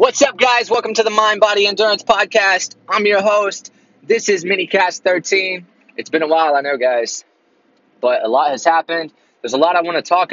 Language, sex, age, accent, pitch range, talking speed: English, male, 20-39, American, 120-175 Hz, 210 wpm